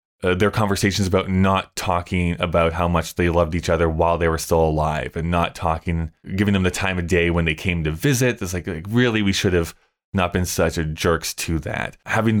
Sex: male